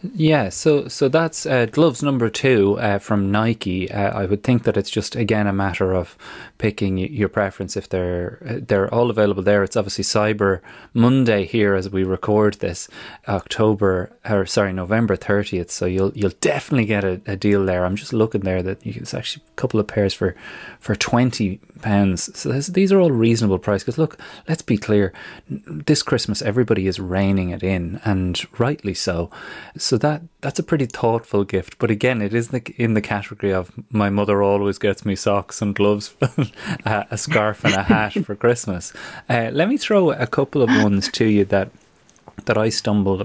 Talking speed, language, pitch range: 190 wpm, English, 95-120 Hz